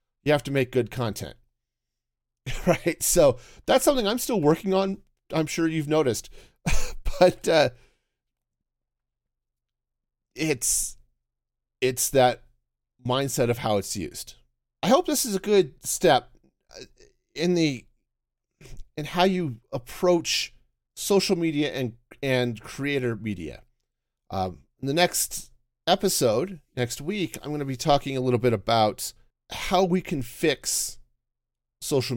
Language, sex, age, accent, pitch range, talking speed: English, male, 40-59, American, 120-160 Hz, 125 wpm